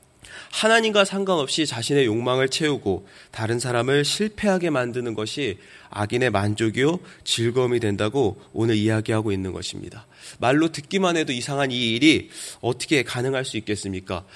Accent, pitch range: native, 115-155 Hz